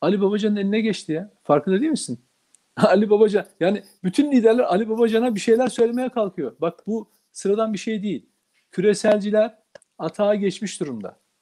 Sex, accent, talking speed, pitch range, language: male, native, 150 wpm, 175-220 Hz, Turkish